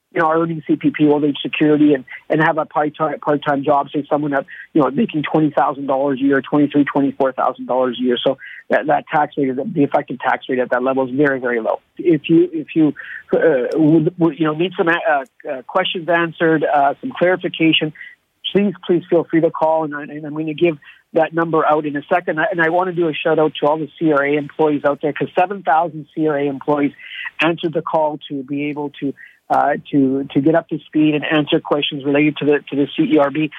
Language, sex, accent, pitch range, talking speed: English, male, American, 145-180 Hz, 240 wpm